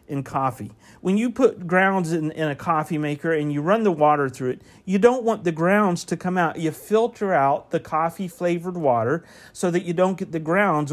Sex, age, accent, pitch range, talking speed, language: male, 40-59, American, 155-220 Hz, 215 wpm, English